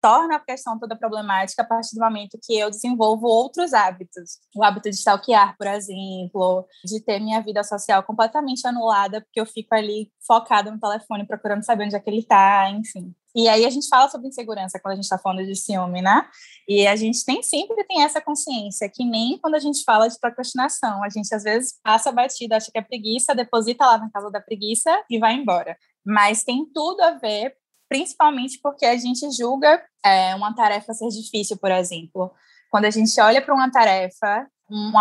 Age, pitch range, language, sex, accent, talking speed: 10-29, 205-260 Hz, Portuguese, female, Brazilian, 200 wpm